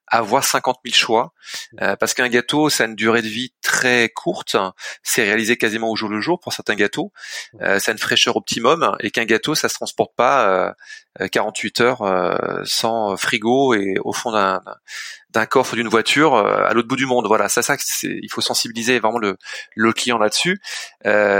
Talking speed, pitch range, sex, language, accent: 200 wpm, 105-130 Hz, male, French, French